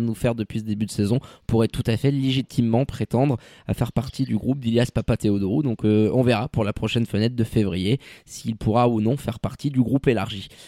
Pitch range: 120-145 Hz